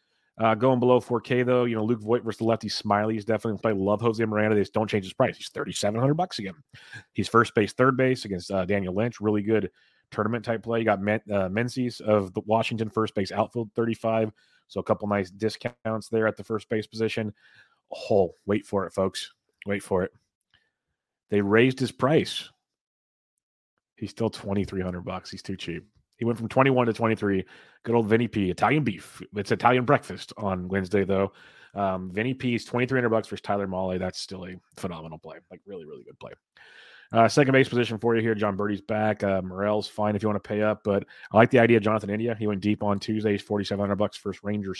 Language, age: English, 30-49